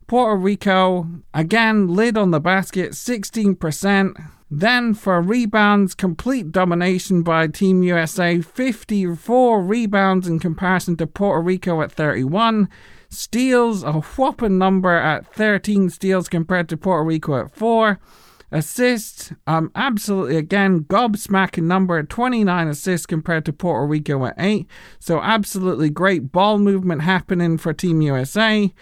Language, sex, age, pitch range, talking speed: English, male, 40-59, 165-205 Hz, 125 wpm